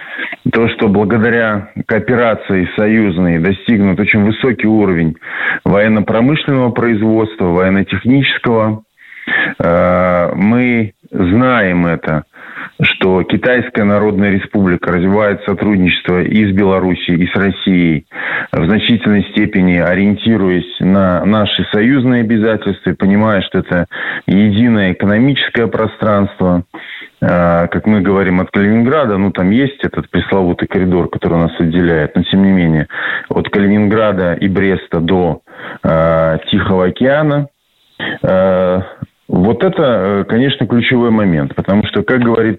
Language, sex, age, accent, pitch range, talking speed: Russian, male, 20-39, native, 90-115 Hz, 105 wpm